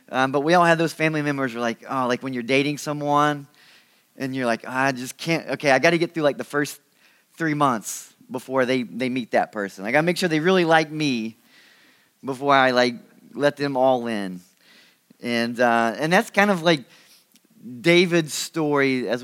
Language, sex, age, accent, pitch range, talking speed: English, male, 20-39, American, 120-155 Hz, 210 wpm